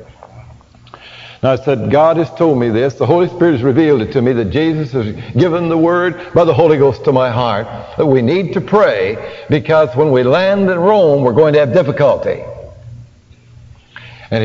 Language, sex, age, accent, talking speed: English, male, 60-79, American, 190 wpm